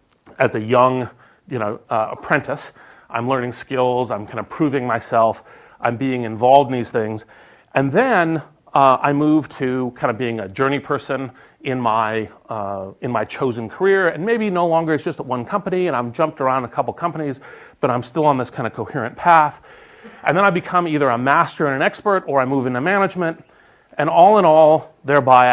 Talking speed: 200 wpm